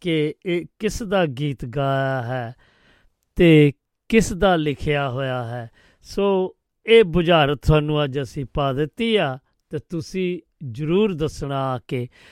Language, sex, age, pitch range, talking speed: Punjabi, male, 50-69, 140-175 Hz, 125 wpm